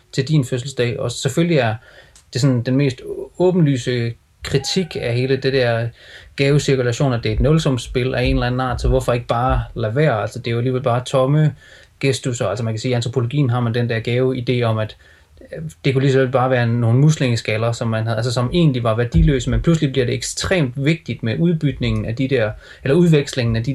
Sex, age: male, 30-49